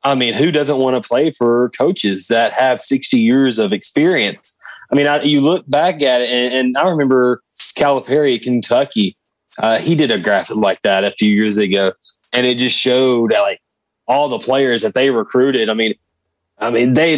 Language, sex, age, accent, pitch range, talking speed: English, male, 30-49, American, 115-140 Hz, 195 wpm